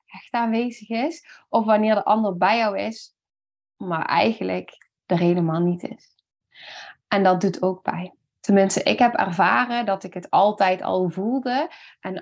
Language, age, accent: Dutch, 20-39, Dutch